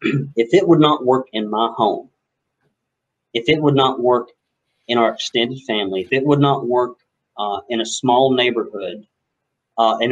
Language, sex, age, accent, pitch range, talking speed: English, male, 40-59, American, 115-135 Hz, 170 wpm